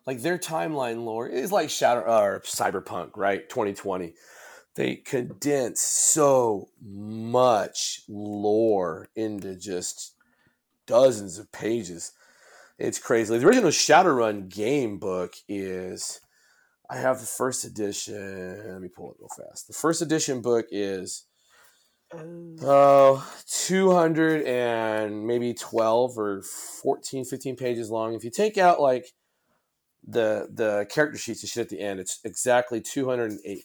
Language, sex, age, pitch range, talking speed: English, male, 30-49, 95-130 Hz, 130 wpm